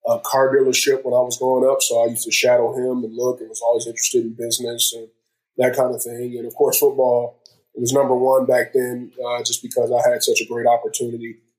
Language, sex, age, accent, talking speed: English, male, 20-39, American, 245 wpm